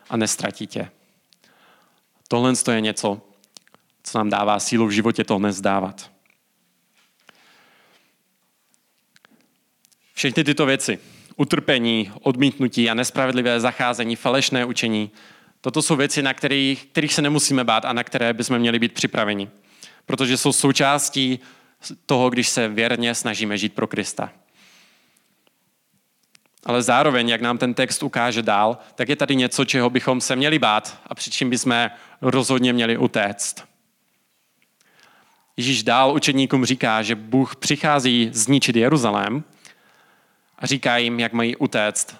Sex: male